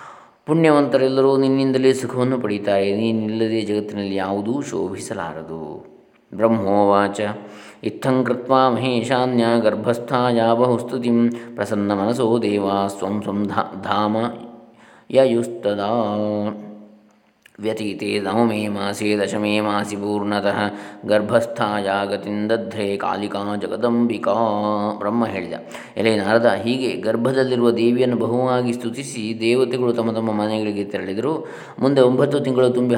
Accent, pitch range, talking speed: native, 105-120 Hz, 80 wpm